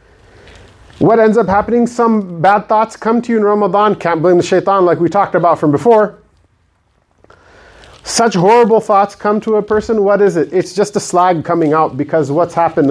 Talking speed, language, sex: 190 wpm, English, male